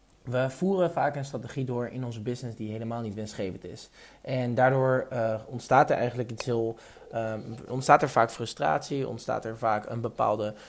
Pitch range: 115-135 Hz